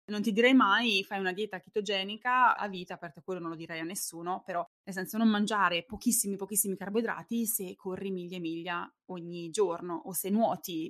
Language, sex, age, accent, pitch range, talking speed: Italian, female, 20-39, native, 175-225 Hz, 195 wpm